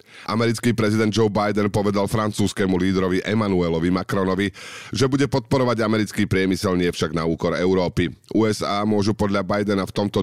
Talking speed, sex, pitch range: 145 wpm, male, 90-115 Hz